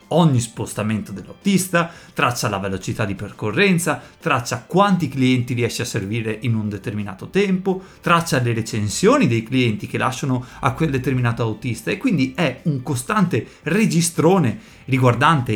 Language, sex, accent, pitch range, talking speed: Italian, male, native, 125-185 Hz, 140 wpm